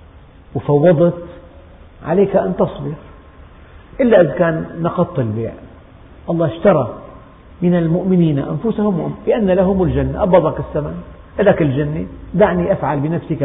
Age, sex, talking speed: 50-69, male, 105 wpm